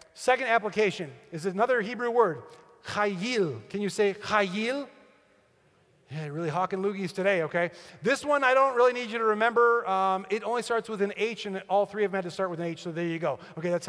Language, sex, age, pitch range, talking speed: English, male, 40-59, 180-225 Hz, 215 wpm